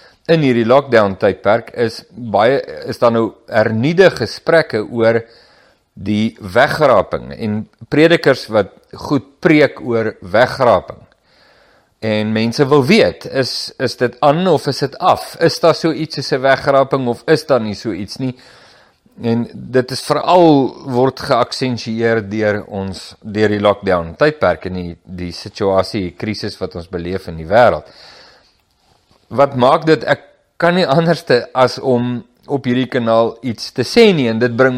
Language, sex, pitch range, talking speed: English, male, 105-140 Hz, 155 wpm